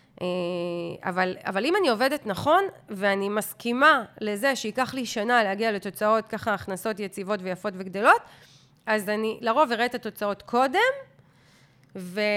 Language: Hebrew